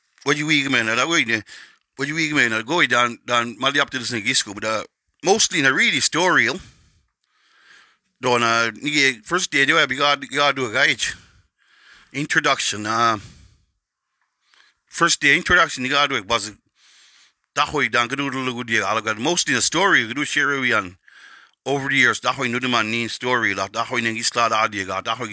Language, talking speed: English, 155 wpm